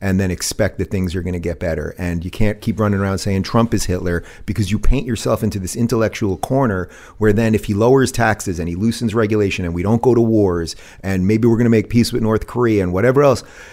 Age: 30-49